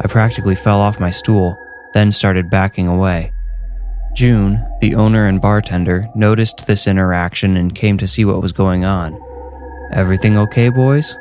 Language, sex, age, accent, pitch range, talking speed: English, male, 20-39, American, 95-115 Hz, 155 wpm